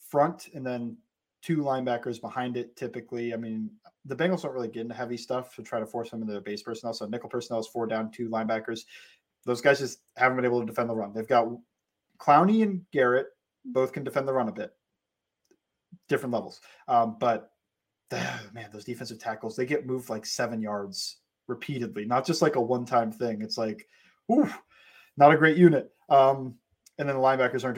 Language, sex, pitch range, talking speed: English, male, 115-145 Hz, 200 wpm